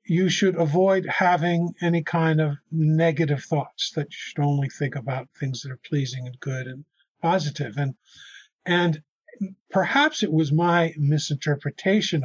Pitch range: 145-175 Hz